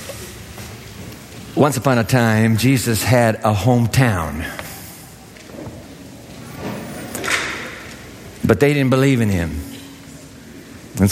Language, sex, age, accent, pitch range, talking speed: English, male, 60-79, American, 110-175 Hz, 80 wpm